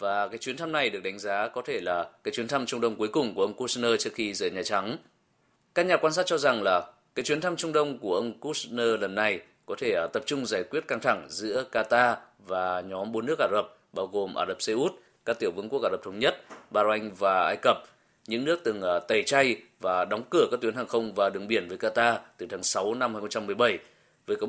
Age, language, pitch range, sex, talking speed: 20-39, Vietnamese, 110-165 Hz, male, 245 wpm